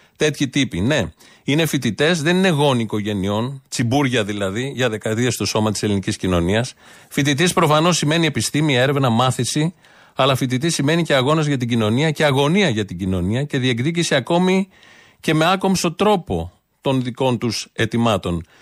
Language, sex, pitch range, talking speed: Greek, male, 115-155 Hz, 155 wpm